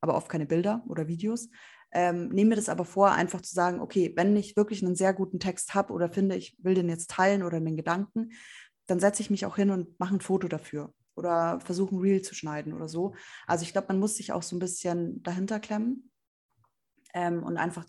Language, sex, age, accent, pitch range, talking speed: German, female, 20-39, German, 170-195 Hz, 230 wpm